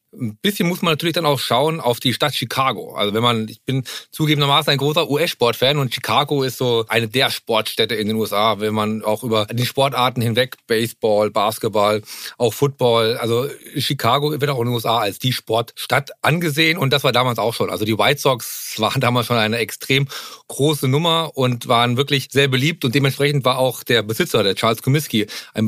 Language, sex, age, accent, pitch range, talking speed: German, male, 40-59, German, 115-150 Hz, 200 wpm